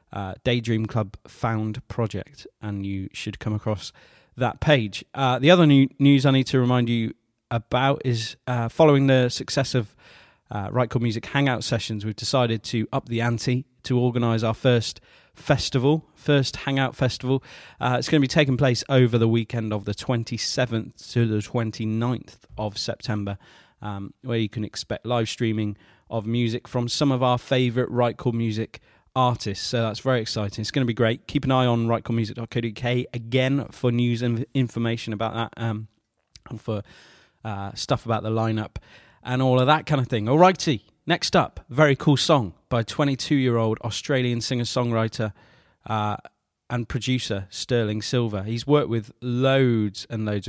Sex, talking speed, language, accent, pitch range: male, 170 wpm, English, British, 110-130 Hz